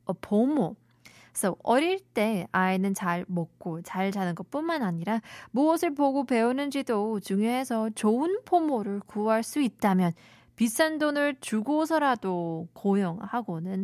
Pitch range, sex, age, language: 185-255 Hz, female, 20-39, Korean